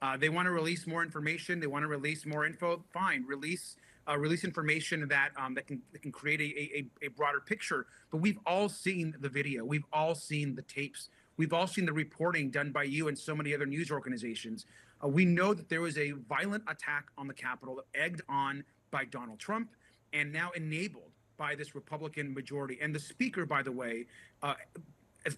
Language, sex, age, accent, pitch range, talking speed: English, male, 30-49, American, 140-180 Hz, 205 wpm